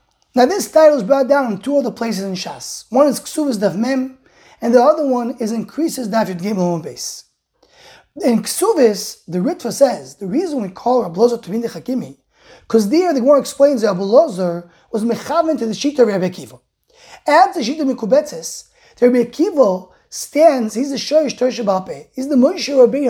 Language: English